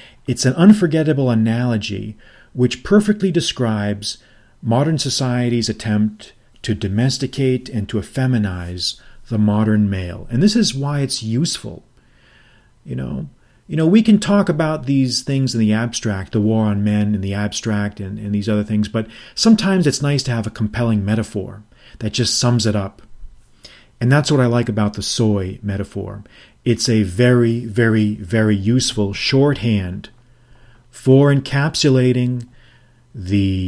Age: 40-59